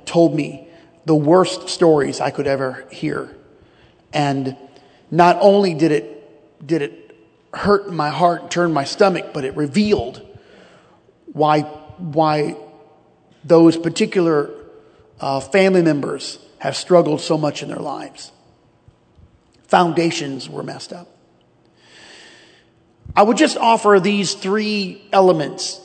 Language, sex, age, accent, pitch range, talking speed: English, male, 40-59, American, 145-185 Hz, 115 wpm